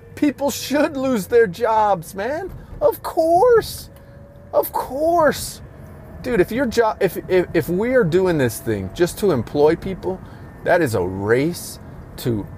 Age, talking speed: 30-49, 150 wpm